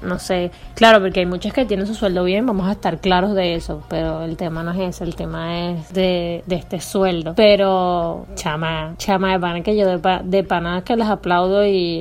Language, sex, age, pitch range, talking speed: Spanish, female, 20-39, 175-205 Hz, 225 wpm